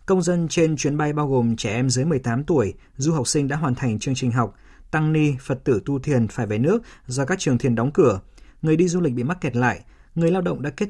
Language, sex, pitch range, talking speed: Vietnamese, male, 120-150 Hz, 270 wpm